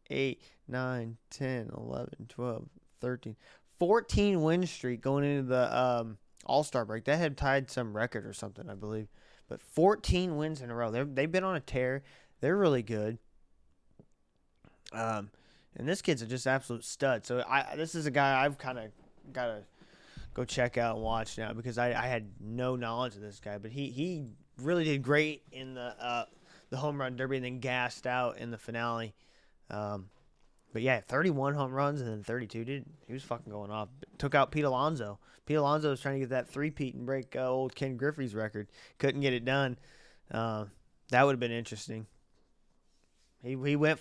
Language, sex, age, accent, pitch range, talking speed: English, male, 20-39, American, 115-140 Hz, 190 wpm